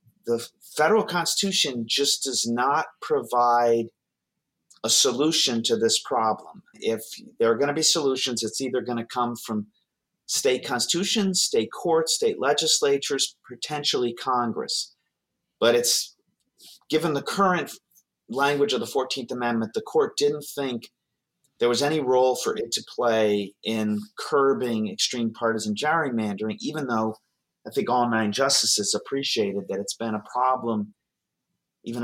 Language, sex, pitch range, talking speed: English, male, 110-145 Hz, 140 wpm